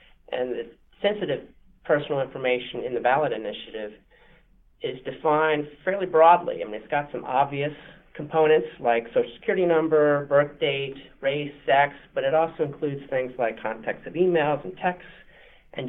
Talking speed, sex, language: 150 wpm, male, English